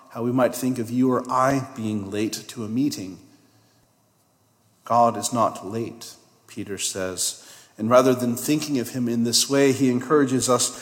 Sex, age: male, 40-59